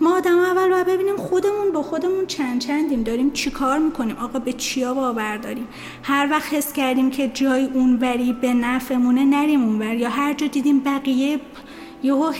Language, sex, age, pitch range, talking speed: Persian, female, 30-49, 255-310 Hz, 170 wpm